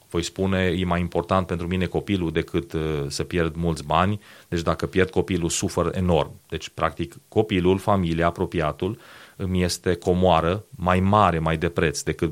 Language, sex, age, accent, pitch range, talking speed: Romanian, male, 30-49, native, 90-110 Hz, 160 wpm